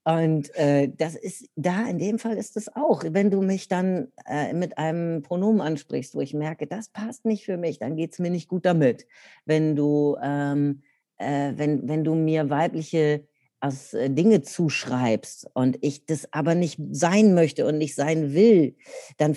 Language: German